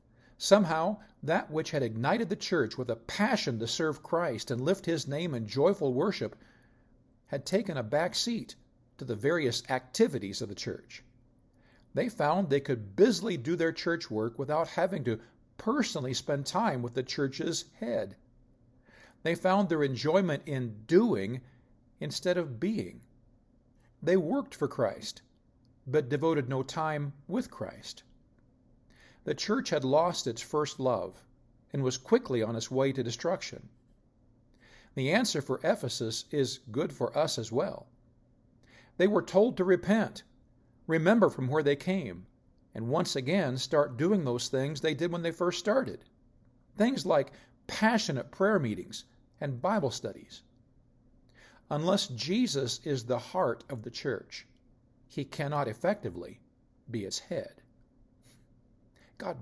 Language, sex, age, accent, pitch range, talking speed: English, male, 50-69, American, 120-170 Hz, 140 wpm